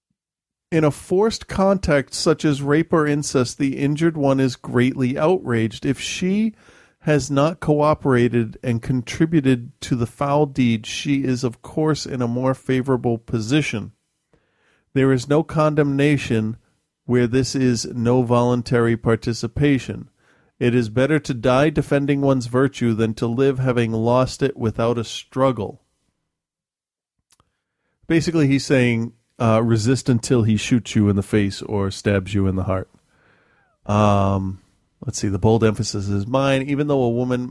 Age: 40-59